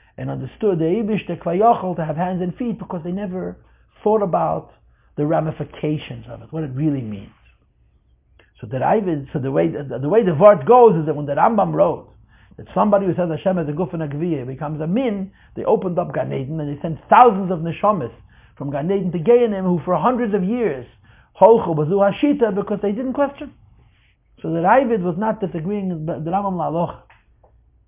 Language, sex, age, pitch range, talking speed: English, male, 60-79, 140-195 Hz, 185 wpm